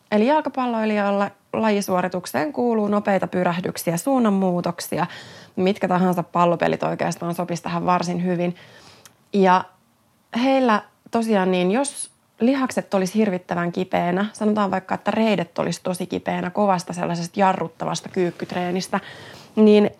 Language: Finnish